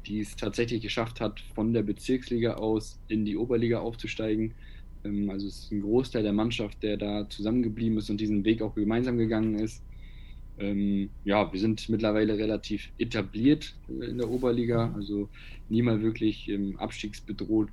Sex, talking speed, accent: male, 155 wpm, German